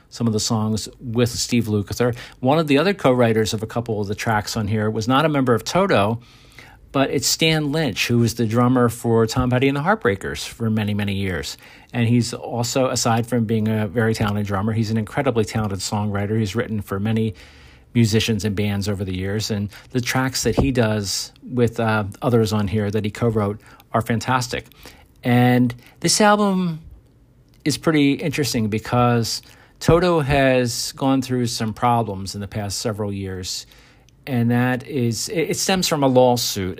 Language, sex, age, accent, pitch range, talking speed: English, male, 50-69, American, 110-125 Hz, 180 wpm